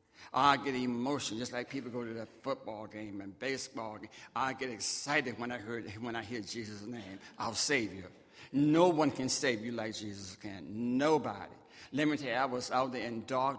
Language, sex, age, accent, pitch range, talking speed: English, male, 60-79, American, 115-140 Hz, 210 wpm